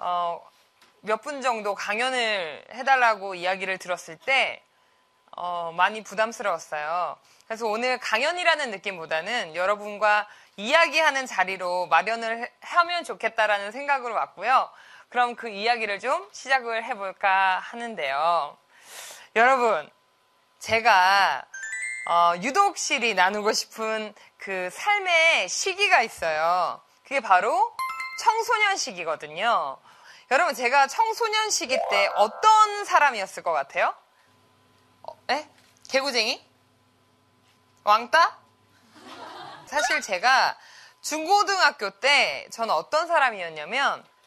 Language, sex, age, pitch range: Korean, female, 20-39, 200-330 Hz